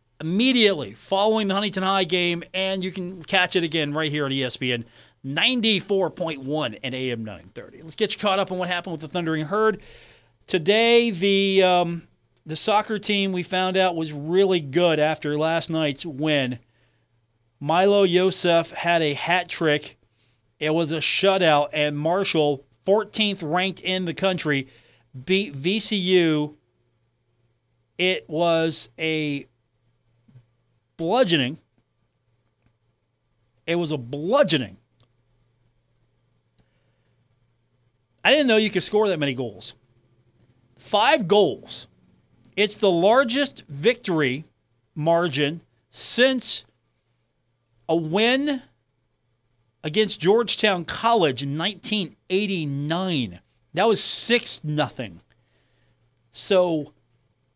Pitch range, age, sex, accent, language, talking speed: 120-185 Hz, 40-59, male, American, English, 105 wpm